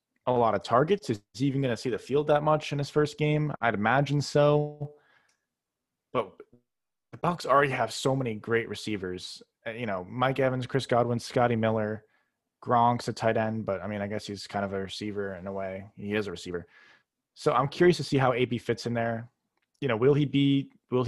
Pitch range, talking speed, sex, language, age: 110-130 Hz, 215 wpm, male, English, 20-39